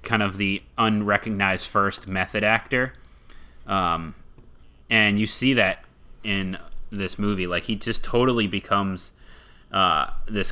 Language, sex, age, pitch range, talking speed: English, male, 30-49, 85-110 Hz, 125 wpm